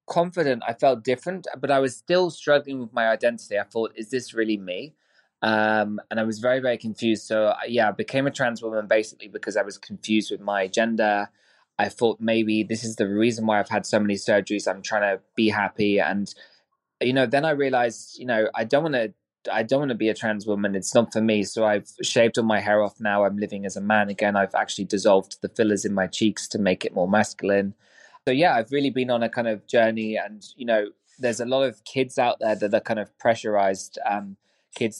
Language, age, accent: English, 20-39, British